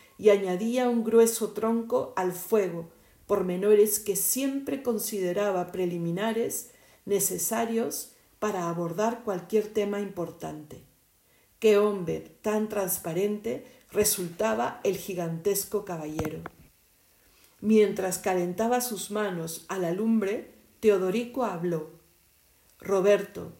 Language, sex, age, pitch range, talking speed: Spanish, female, 50-69, 175-220 Hz, 95 wpm